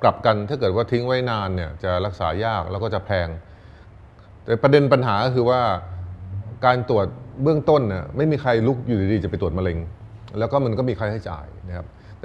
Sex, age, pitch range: male, 30-49, 95-120 Hz